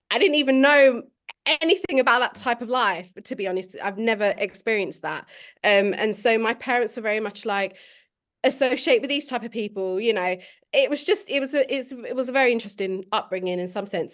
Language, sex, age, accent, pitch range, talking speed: English, female, 20-39, British, 190-245 Hz, 200 wpm